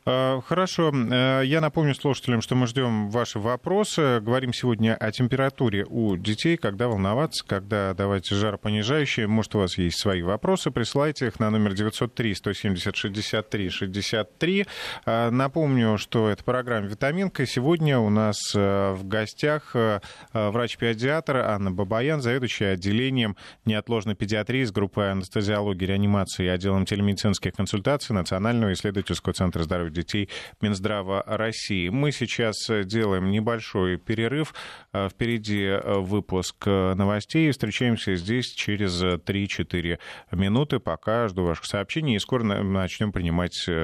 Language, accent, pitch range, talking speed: Russian, native, 100-125 Hz, 115 wpm